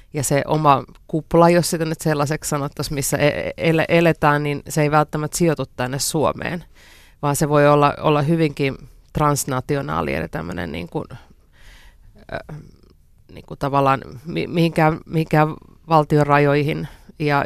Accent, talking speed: native, 125 wpm